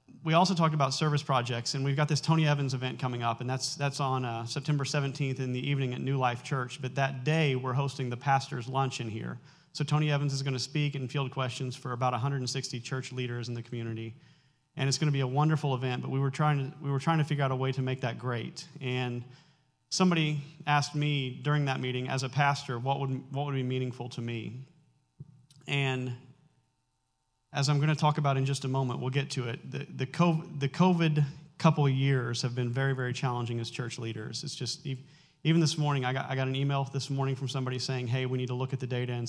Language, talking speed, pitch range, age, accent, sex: English, 240 wpm, 125-145 Hz, 40-59, American, male